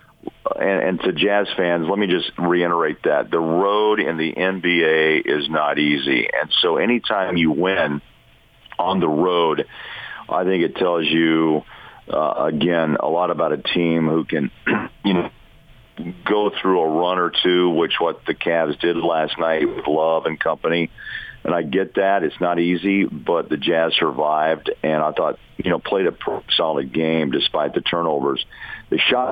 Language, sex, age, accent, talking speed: English, male, 50-69, American, 170 wpm